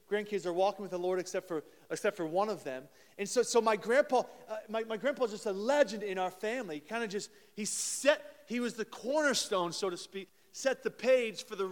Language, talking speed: English, 240 wpm